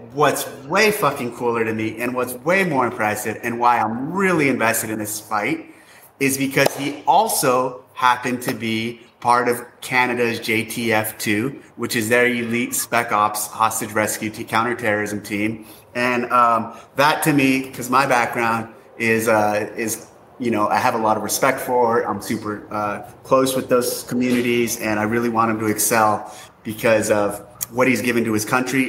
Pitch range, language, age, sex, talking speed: 110-130 Hz, English, 30-49, male, 175 wpm